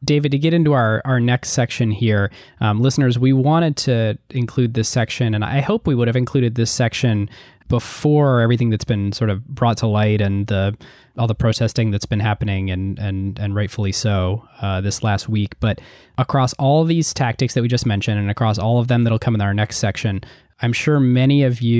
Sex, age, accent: male, 20-39, American